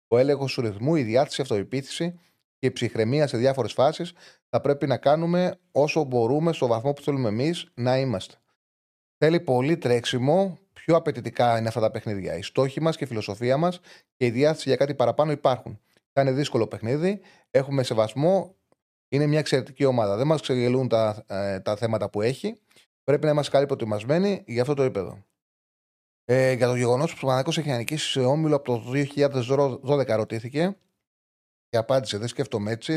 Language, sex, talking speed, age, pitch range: Greek, male, 170 wpm, 30-49, 115-145 Hz